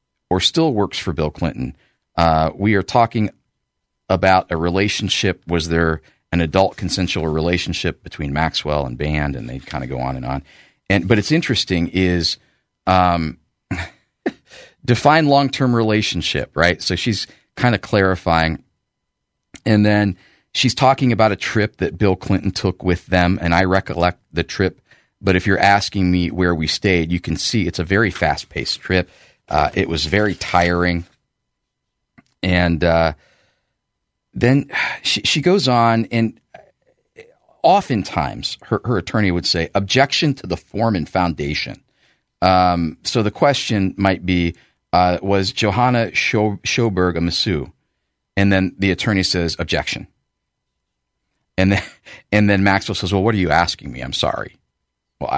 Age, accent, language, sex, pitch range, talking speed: 40-59, American, English, male, 85-105 Hz, 155 wpm